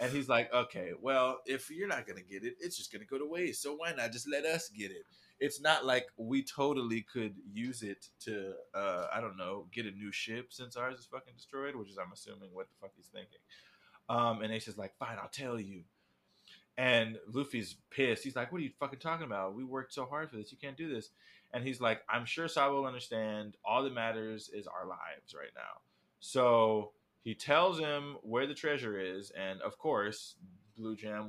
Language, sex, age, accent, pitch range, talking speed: English, male, 20-39, American, 110-135 Hz, 225 wpm